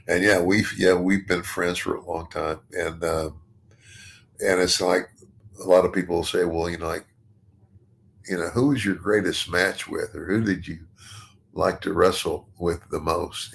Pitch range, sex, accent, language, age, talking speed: 90-105 Hz, male, American, English, 50-69, 190 wpm